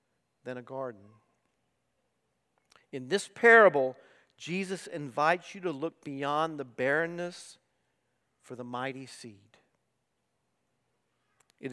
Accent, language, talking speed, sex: American, English, 95 wpm, male